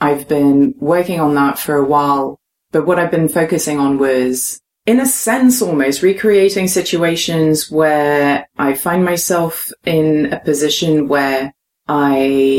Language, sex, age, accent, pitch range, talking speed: English, female, 30-49, British, 140-170 Hz, 145 wpm